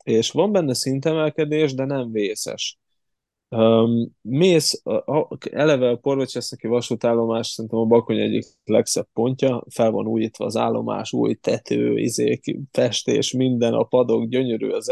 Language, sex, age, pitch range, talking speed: Hungarian, male, 20-39, 110-125 Hz, 130 wpm